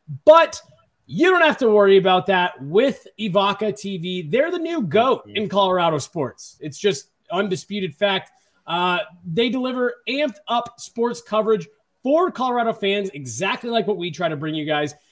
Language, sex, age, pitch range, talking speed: English, male, 30-49, 180-235 Hz, 165 wpm